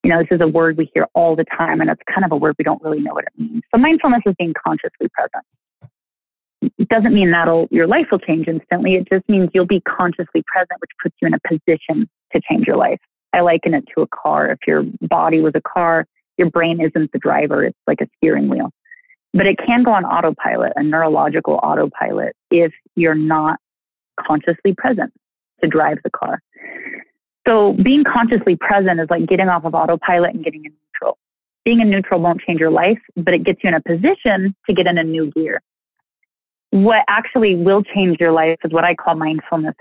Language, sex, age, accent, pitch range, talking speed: English, female, 30-49, American, 165-200 Hz, 215 wpm